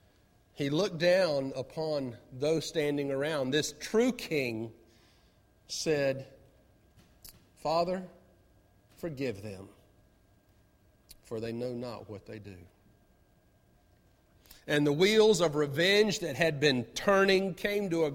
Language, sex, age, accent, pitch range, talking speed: English, male, 40-59, American, 135-220 Hz, 110 wpm